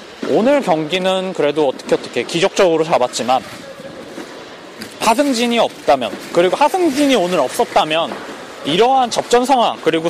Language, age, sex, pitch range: Korean, 20-39, male, 170-245 Hz